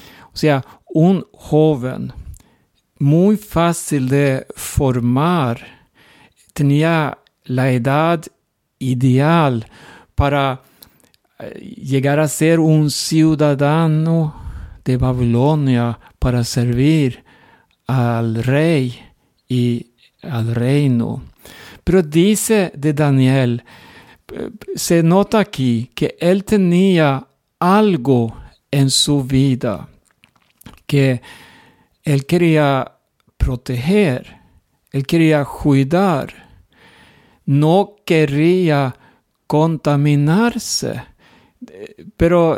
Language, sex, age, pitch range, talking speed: Spanish, male, 60-79, 130-170 Hz, 75 wpm